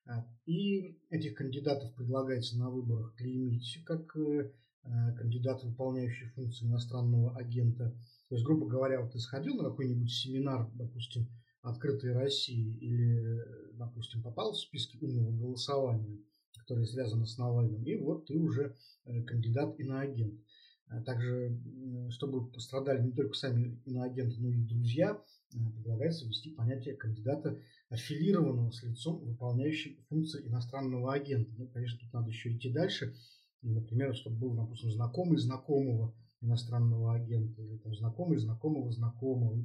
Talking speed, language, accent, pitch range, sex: 125 wpm, Russian, native, 115-140 Hz, male